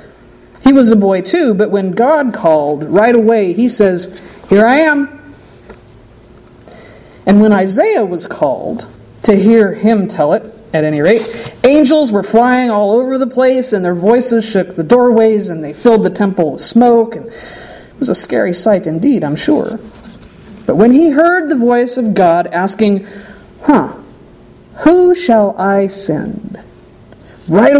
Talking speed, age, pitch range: 160 wpm, 50-69, 185-245 Hz